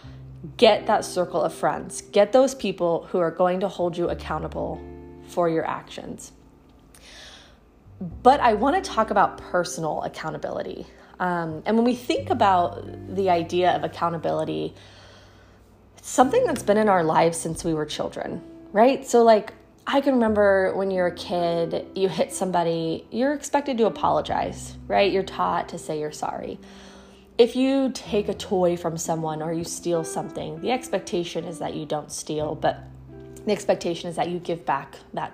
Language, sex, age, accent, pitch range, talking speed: English, female, 20-39, American, 155-210 Hz, 165 wpm